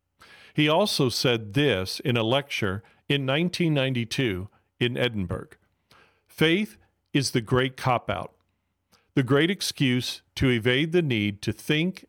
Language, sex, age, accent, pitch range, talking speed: English, male, 40-59, American, 110-140 Hz, 125 wpm